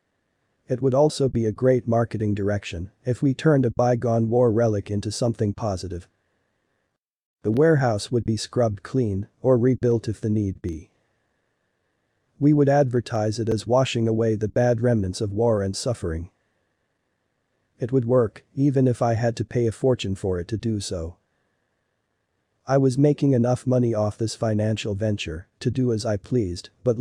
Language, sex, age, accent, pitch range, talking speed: English, male, 40-59, American, 105-125 Hz, 165 wpm